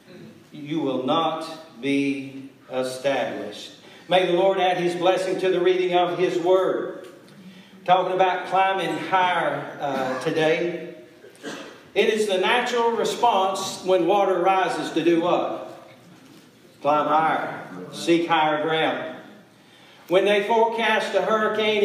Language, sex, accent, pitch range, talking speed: English, male, American, 175-210 Hz, 120 wpm